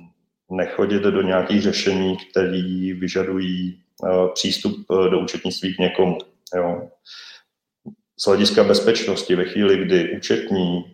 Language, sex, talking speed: Czech, male, 115 wpm